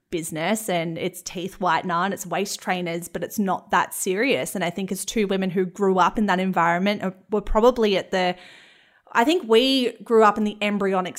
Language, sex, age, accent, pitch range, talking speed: English, female, 20-39, Australian, 190-240 Hz, 205 wpm